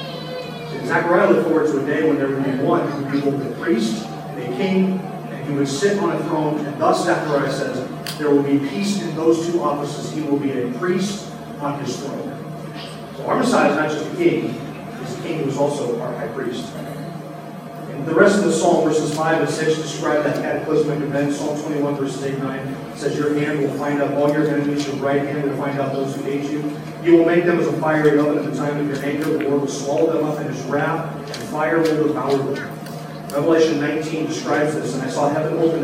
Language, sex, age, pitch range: English, male, 40-59, 145-170 Hz